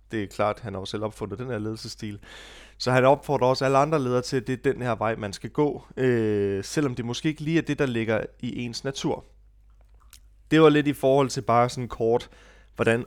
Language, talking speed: Danish, 230 wpm